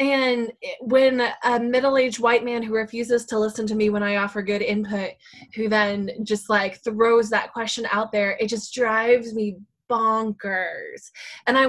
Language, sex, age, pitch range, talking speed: English, female, 10-29, 200-240 Hz, 170 wpm